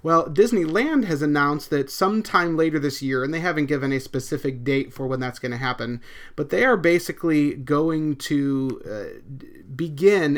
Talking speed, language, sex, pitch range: 175 wpm, English, male, 135-165 Hz